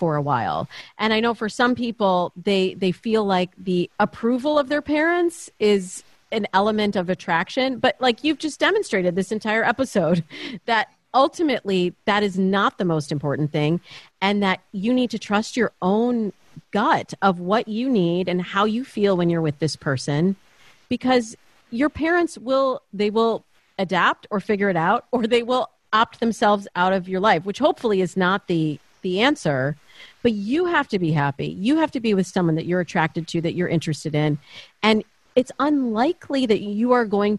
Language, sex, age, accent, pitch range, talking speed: English, female, 40-59, American, 185-240 Hz, 185 wpm